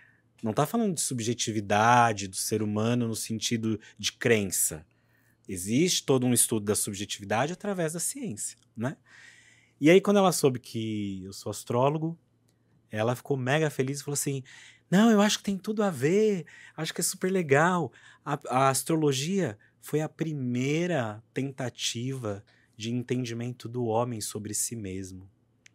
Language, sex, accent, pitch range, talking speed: Portuguese, male, Brazilian, 110-145 Hz, 150 wpm